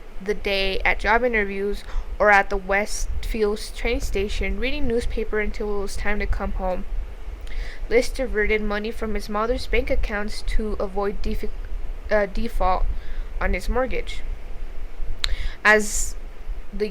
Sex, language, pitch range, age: female, English, 200-235 Hz, 10-29